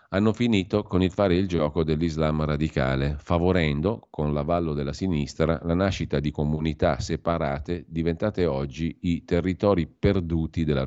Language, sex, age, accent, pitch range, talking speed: Italian, male, 40-59, native, 75-95 Hz, 140 wpm